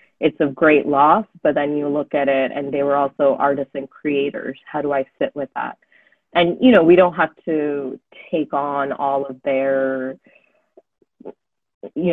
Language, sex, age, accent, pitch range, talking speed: English, female, 20-39, American, 135-155 Hz, 180 wpm